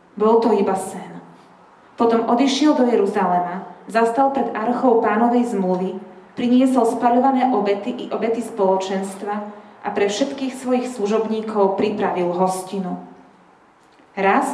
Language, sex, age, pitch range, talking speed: Slovak, female, 30-49, 195-255 Hz, 110 wpm